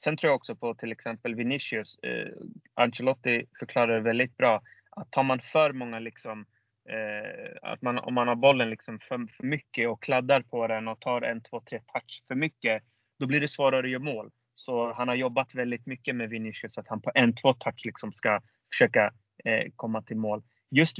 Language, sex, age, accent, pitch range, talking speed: Swedish, male, 30-49, native, 115-140 Hz, 195 wpm